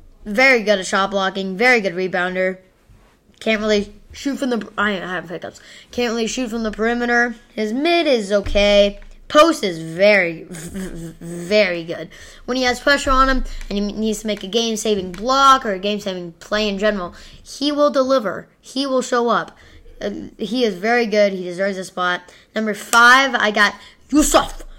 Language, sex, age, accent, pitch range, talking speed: English, female, 10-29, American, 190-260 Hz, 170 wpm